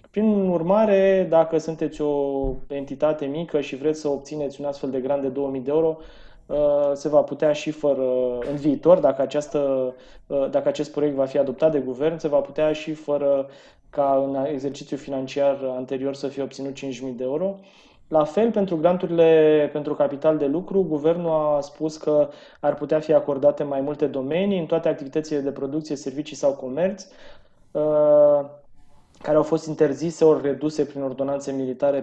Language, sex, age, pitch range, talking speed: Romanian, male, 20-39, 140-160 Hz, 165 wpm